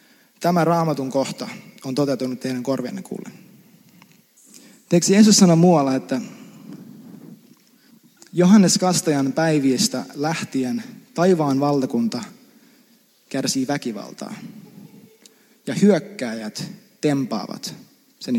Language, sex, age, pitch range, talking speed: Finnish, male, 20-39, 165-235 Hz, 80 wpm